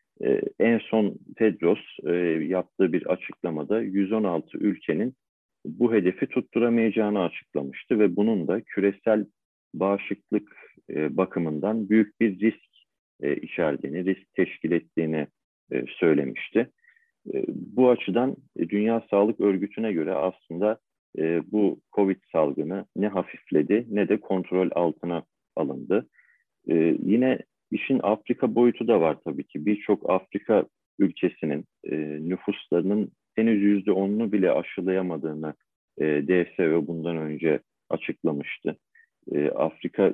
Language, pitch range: Turkish, 90-110 Hz